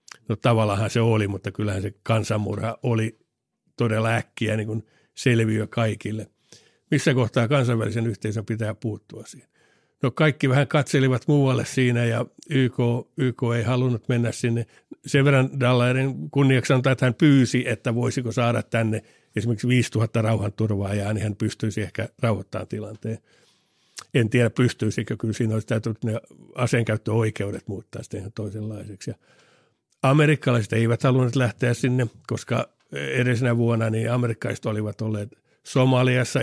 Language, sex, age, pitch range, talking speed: Finnish, male, 60-79, 110-125 Hz, 135 wpm